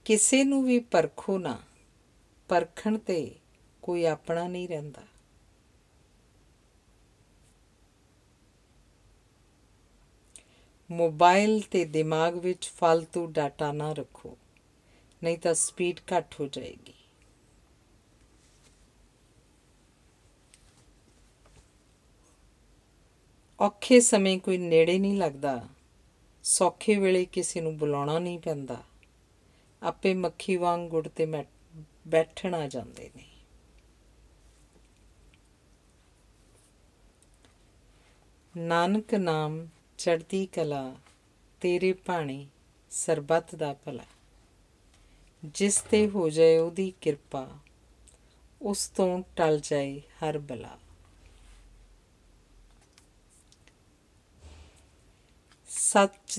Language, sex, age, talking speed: Punjabi, female, 50-69, 70 wpm